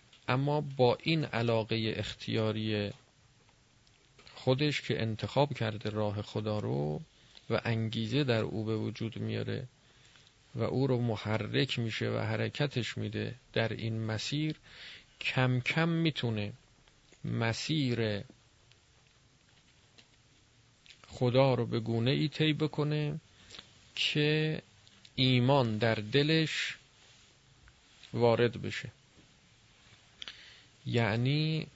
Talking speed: 90 wpm